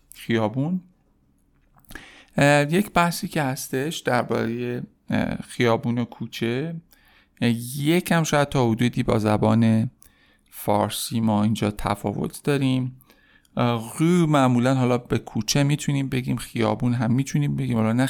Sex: male